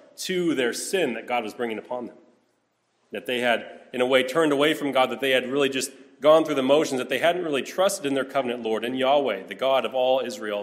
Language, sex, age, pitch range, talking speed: English, male, 30-49, 125-155 Hz, 250 wpm